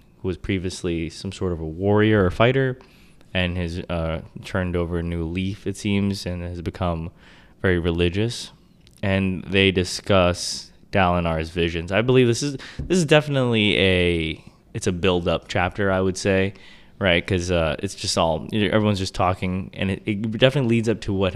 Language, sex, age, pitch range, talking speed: English, male, 20-39, 85-100 Hz, 185 wpm